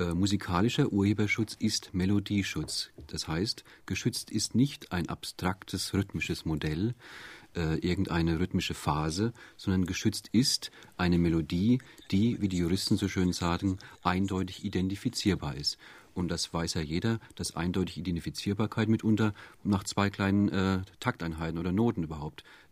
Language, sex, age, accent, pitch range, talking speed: German, male, 40-59, German, 85-110 Hz, 130 wpm